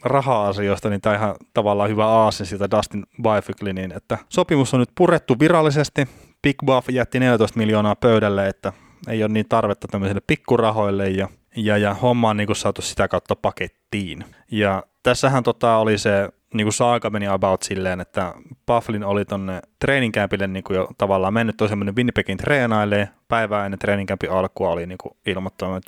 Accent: native